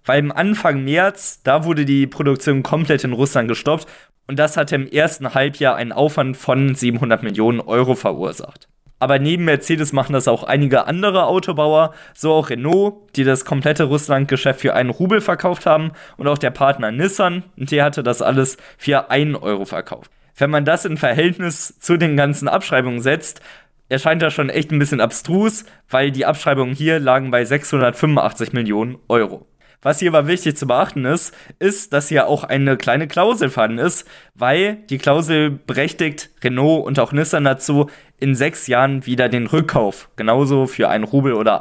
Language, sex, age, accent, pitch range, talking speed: German, male, 20-39, German, 130-155 Hz, 175 wpm